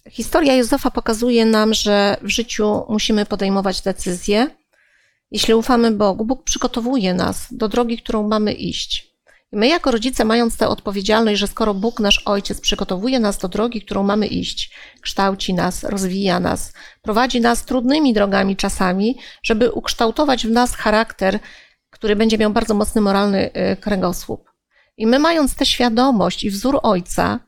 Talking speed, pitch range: 150 wpm, 205-240 Hz